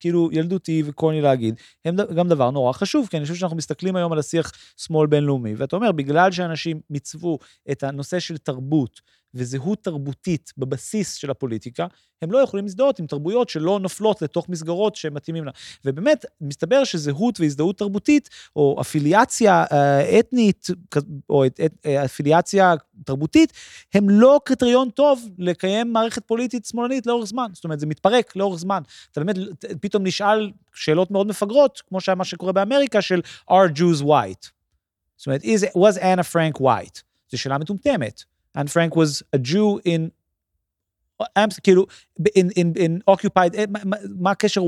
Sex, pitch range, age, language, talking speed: male, 145-200 Hz, 30-49, Hebrew, 130 wpm